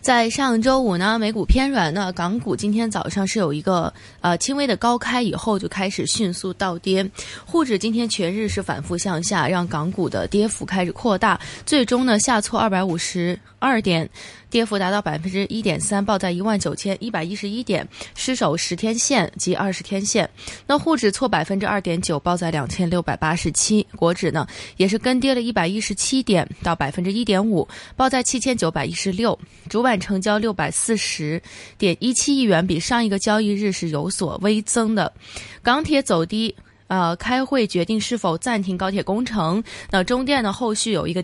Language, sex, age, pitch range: Chinese, female, 20-39, 180-235 Hz